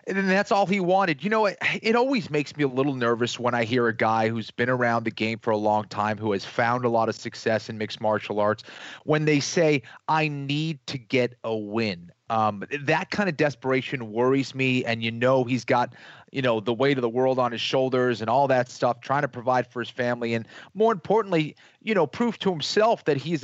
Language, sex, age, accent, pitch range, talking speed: English, male, 30-49, American, 125-185 Hz, 235 wpm